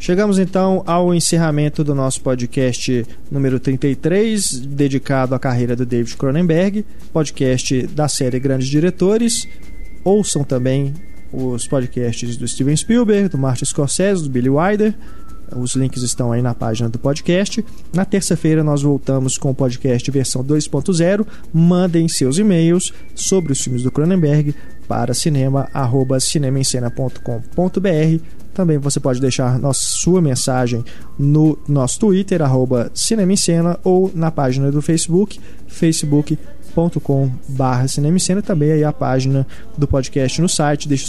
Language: Portuguese